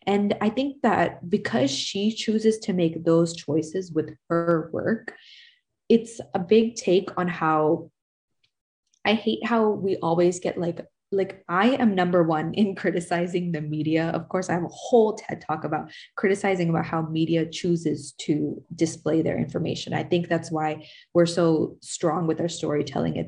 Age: 20-39